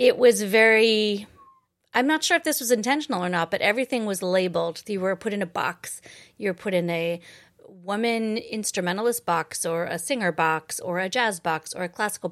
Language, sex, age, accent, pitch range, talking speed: English, female, 30-49, American, 175-220 Hz, 200 wpm